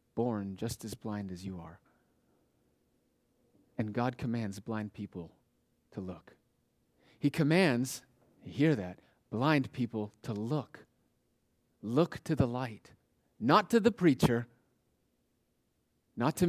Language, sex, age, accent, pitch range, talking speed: English, male, 30-49, American, 115-165 Hz, 115 wpm